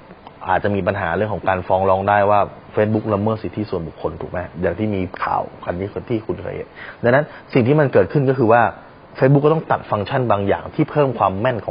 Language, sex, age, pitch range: Thai, male, 20-39, 95-120 Hz